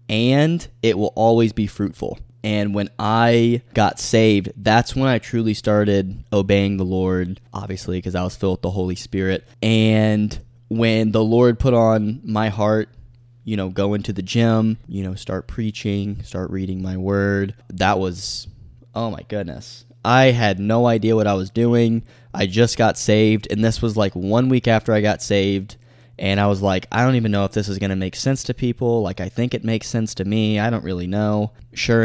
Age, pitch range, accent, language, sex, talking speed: 10-29, 95-115 Hz, American, English, male, 200 wpm